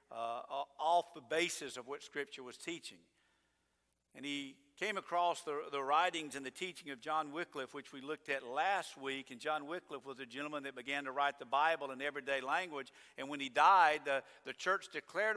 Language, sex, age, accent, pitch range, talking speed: English, male, 50-69, American, 140-175 Hz, 200 wpm